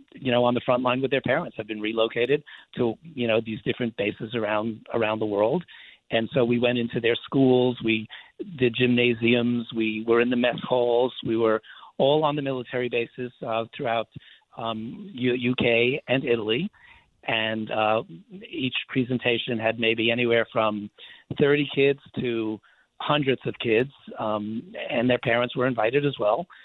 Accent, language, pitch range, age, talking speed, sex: American, English, 115-130 Hz, 40-59, 165 wpm, male